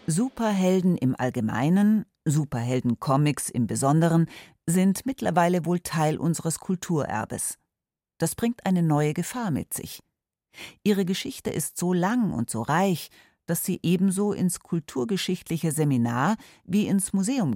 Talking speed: 125 wpm